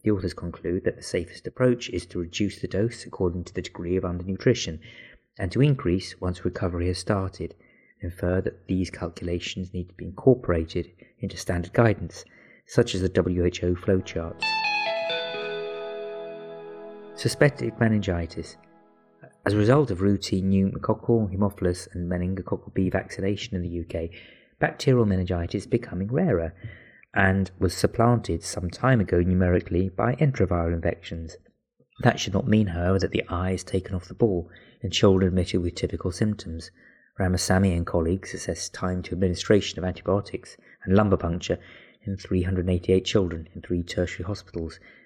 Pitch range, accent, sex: 90-105 Hz, British, male